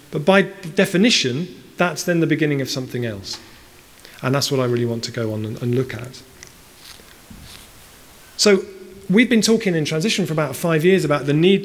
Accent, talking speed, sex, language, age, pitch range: British, 180 wpm, male, English, 40-59, 130-180 Hz